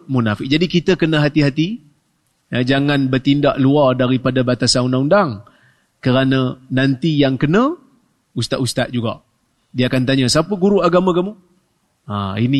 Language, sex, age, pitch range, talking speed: Malay, male, 30-49, 130-175 Hz, 130 wpm